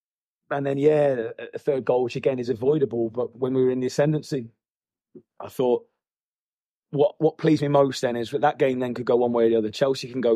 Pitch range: 115-130 Hz